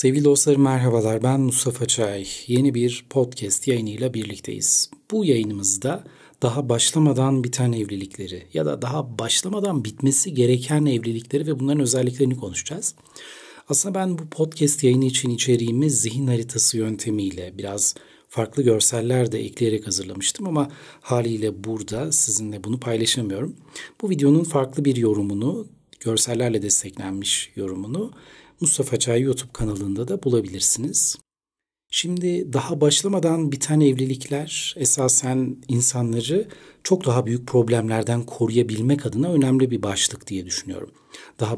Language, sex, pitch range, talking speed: Turkish, male, 110-145 Hz, 120 wpm